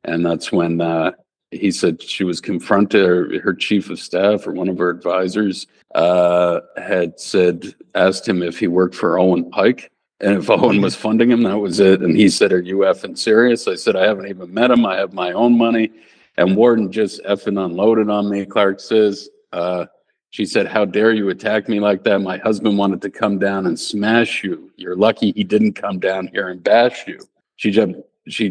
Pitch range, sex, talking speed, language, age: 90-110 Hz, male, 210 wpm, English, 50-69